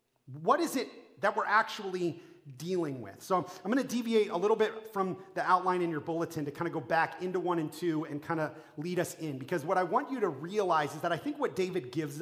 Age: 30-49